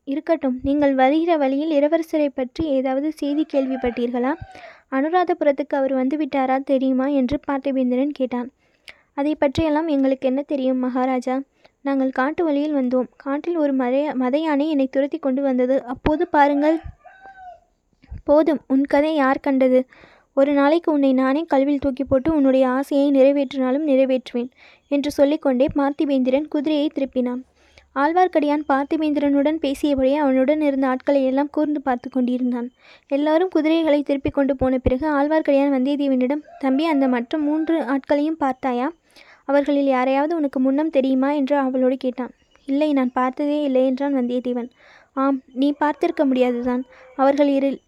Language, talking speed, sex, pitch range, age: Tamil, 120 wpm, female, 260-295 Hz, 20-39